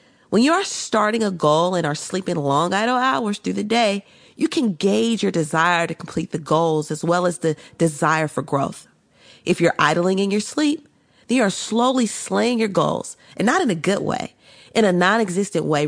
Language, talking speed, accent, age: English, 205 wpm, American, 40-59